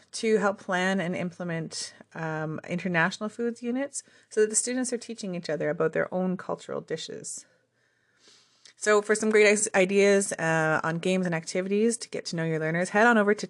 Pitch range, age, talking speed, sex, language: 170-220 Hz, 30-49, 185 wpm, female, English